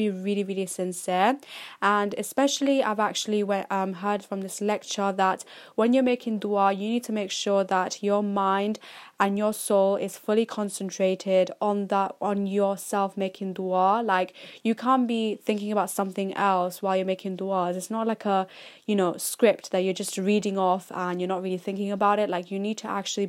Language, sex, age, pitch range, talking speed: English, female, 10-29, 195-220 Hz, 190 wpm